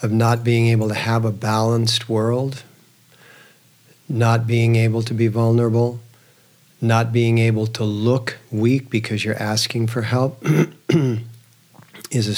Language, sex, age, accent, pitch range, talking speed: English, male, 50-69, American, 115-125 Hz, 135 wpm